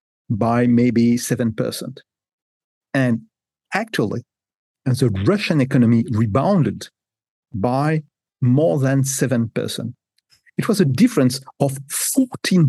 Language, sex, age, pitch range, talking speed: German, male, 50-69, 125-175 Hz, 100 wpm